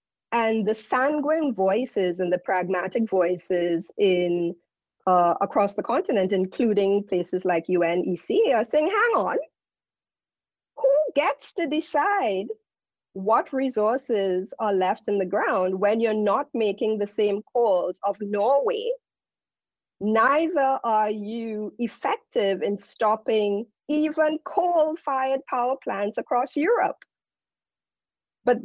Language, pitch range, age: English, 200-280 Hz, 50-69